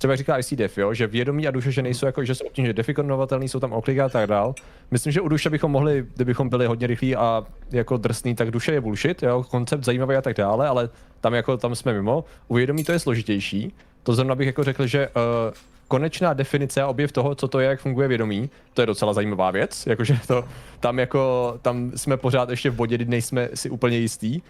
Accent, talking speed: native, 230 wpm